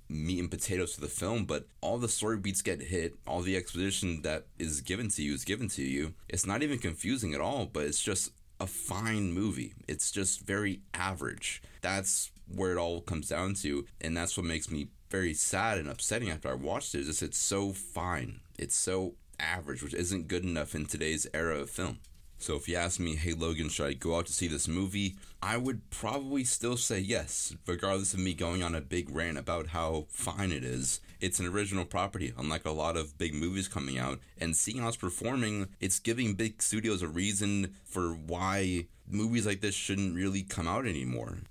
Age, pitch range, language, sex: 30-49, 80-100 Hz, English, male